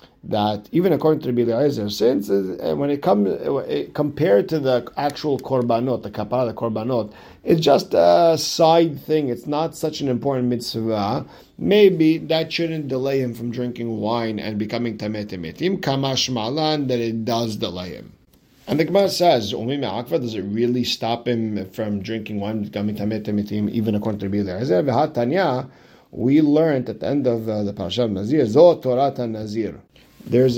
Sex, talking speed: male, 160 wpm